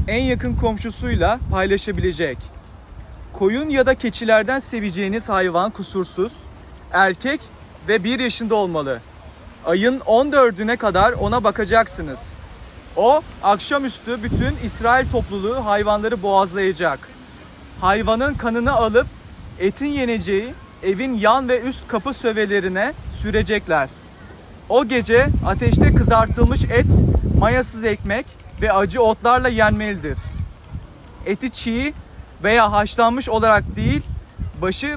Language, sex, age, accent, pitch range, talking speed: Turkish, male, 40-59, native, 190-250 Hz, 100 wpm